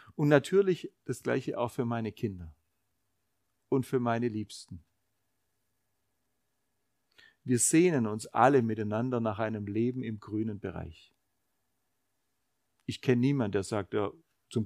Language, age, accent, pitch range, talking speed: German, 50-69, German, 110-135 Hz, 120 wpm